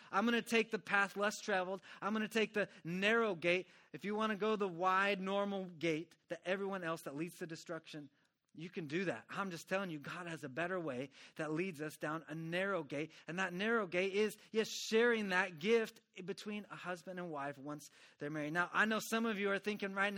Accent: American